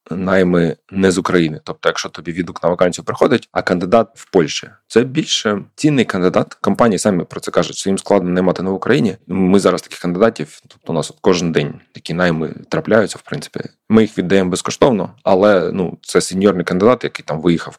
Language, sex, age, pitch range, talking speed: Ukrainian, male, 20-39, 90-110 Hz, 195 wpm